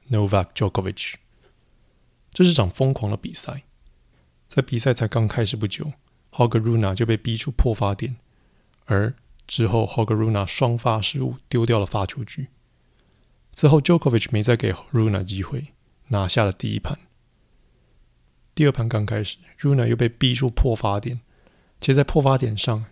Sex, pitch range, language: male, 100-125 Hz, Chinese